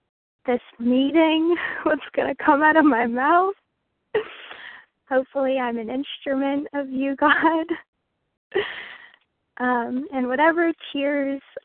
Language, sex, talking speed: English, female, 105 wpm